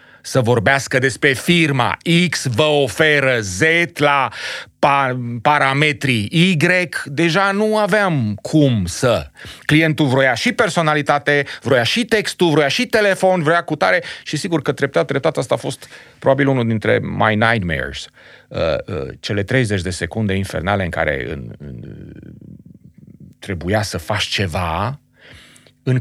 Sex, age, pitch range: male, 30-49, 100-150 Hz